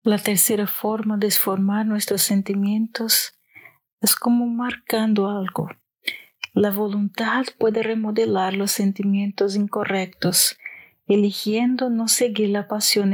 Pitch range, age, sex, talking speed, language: 195-225 Hz, 40-59, female, 105 wpm, Spanish